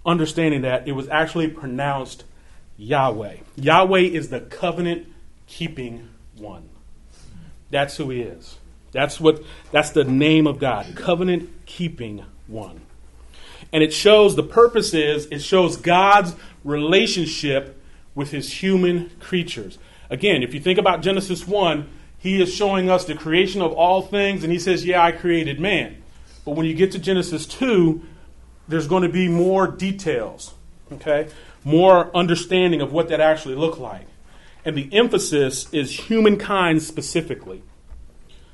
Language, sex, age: English, male, 30-49